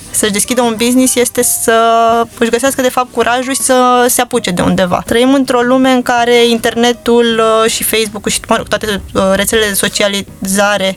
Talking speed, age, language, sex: 175 wpm, 20-39, Romanian, female